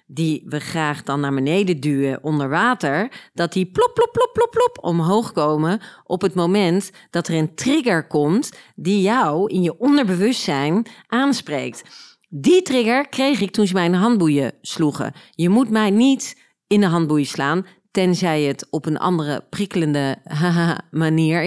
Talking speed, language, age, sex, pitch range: 165 wpm, Dutch, 40-59, female, 160-220 Hz